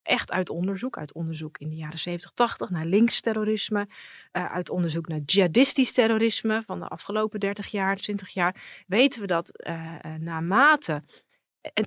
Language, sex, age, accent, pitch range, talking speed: Dutch, female, 30-49, Dutch, 170-220 Hz, 155 wpm